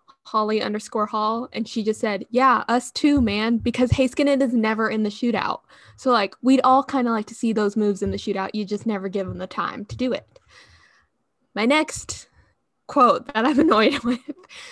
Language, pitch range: English, 210-255 Hz